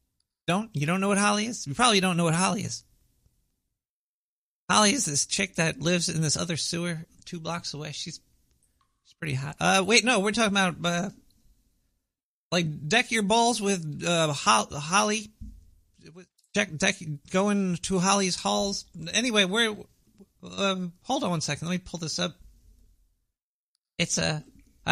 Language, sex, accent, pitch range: English, male, American, 150-200 Hz